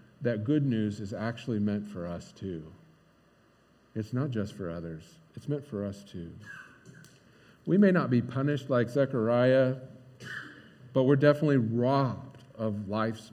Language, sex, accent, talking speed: English, male, American, 145 wpm